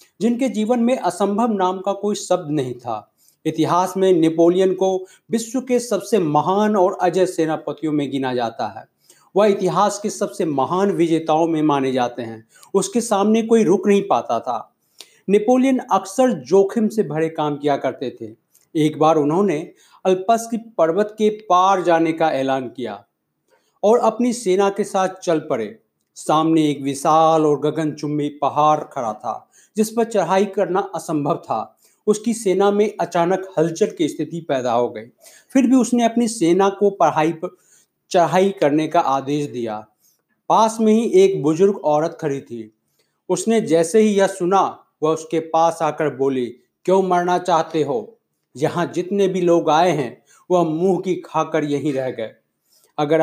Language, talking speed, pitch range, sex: Hindi, 160 wpm, 150-200 Hz, male